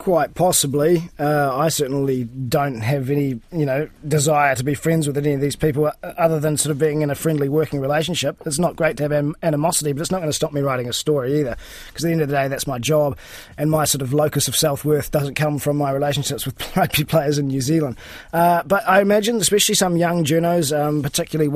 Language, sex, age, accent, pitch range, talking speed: English, male, 20-39, Australian, 145-160 Hz, 235 wpm